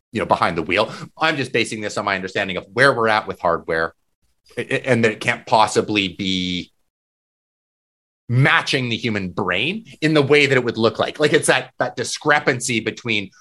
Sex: male